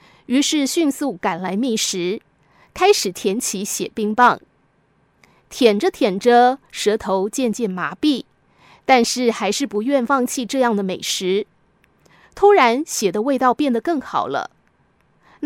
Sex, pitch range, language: female, 205-280 Hz, Chinese